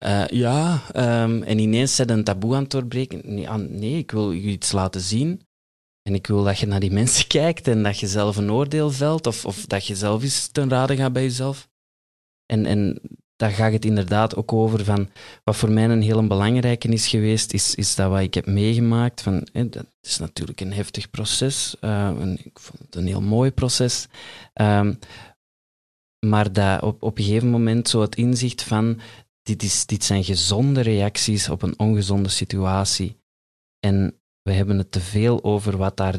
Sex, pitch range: male, 100-115 Hz